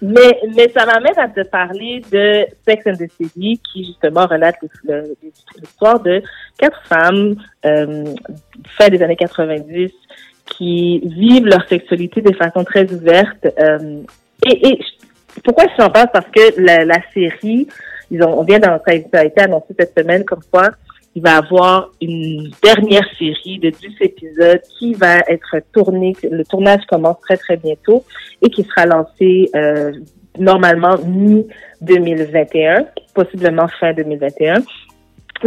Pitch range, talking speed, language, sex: 165-210 Hz, 150 wpm, French, female